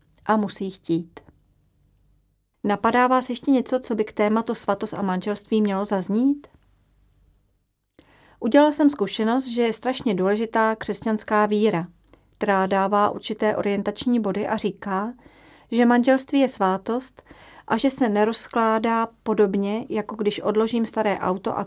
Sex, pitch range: female, 195-230 Hz